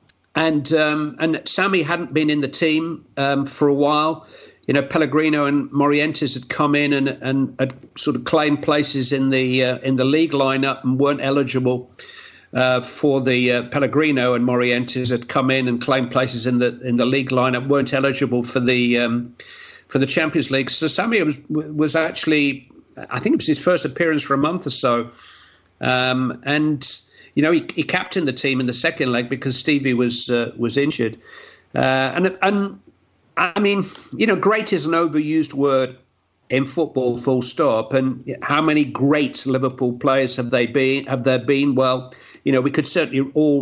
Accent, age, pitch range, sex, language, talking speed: British, 50-69, 125-150 Hz, male, English, 190 wpm